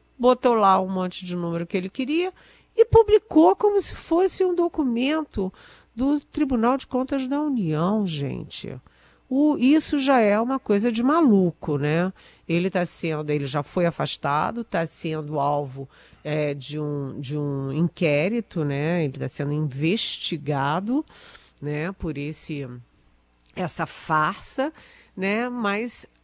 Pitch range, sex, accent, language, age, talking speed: 165-250 Hz, female, Brazilian, Portuguese, 50-69, 130 wpm